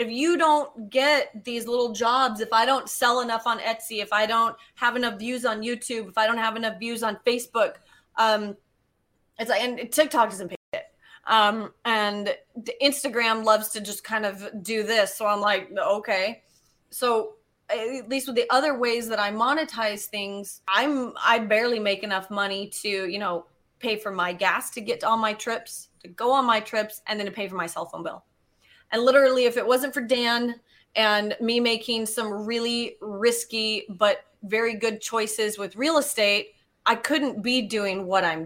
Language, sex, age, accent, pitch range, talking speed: English, female, 30-49, American, 210-245 Hz, 190 wpm